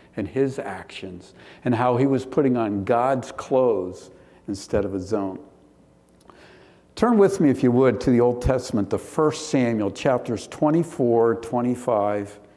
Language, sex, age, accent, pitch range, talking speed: English, male, 50-69, American, 95-130 Hz, 150 wpm